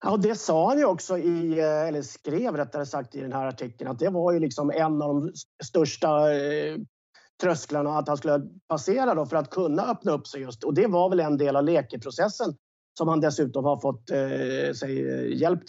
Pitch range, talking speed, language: 145-170 Hz, 210 wpm, English